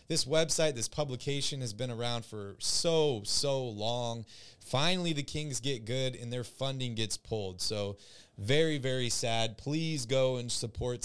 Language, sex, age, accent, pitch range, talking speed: English, male, 30-49, American, 115-150 Hz, 160 wpm